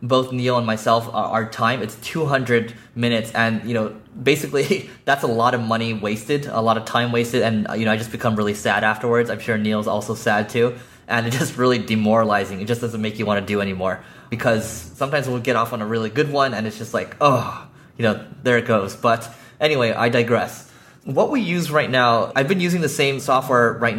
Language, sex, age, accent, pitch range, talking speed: English, male, 20-39, American, 110-130 Hz, 225 wpm